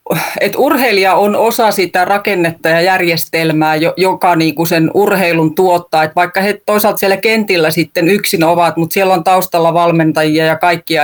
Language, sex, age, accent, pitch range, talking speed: Finnish, female, 30-49, native, 160-195 Hz, 160 wpm